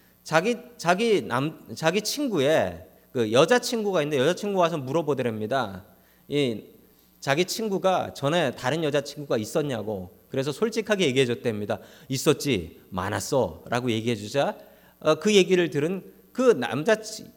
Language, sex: Korean, male